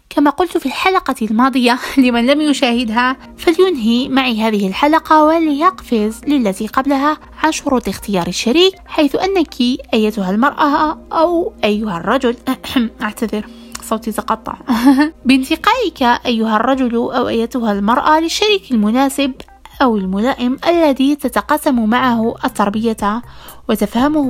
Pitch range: 225-300 Hz